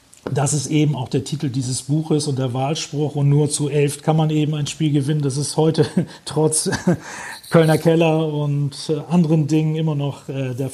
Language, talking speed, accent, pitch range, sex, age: German, 185 wpm, German, 140-160 Hz, male, 40-59